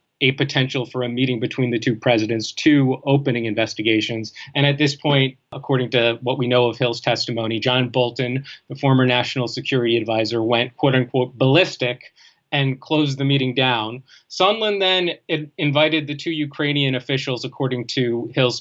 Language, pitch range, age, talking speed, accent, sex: English, 125-145 Hz, 30-49, 160 wpm, American, male